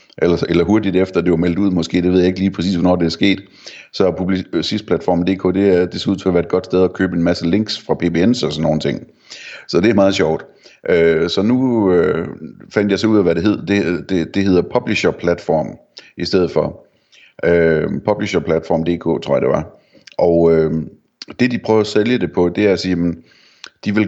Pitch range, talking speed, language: 85-95 Hz, 225 wpm, Danish